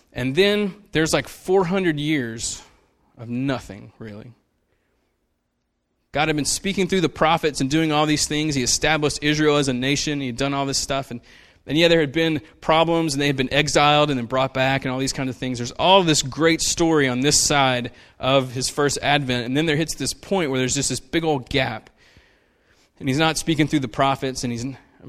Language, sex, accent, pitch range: English, male, American, 120-155 Hz